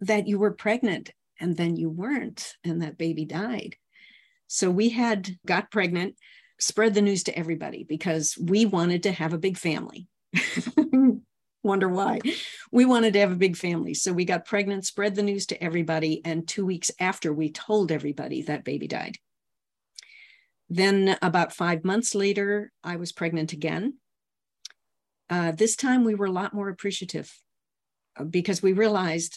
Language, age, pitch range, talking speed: English, 50-69, 165-205 Hz, 160 wpm